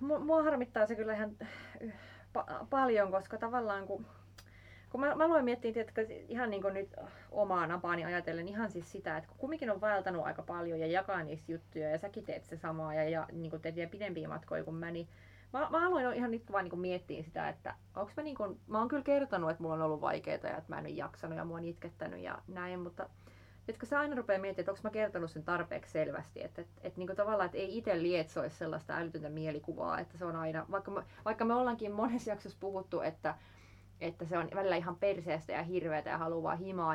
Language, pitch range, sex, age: Finnish, 160-215 Hz, female, 30-49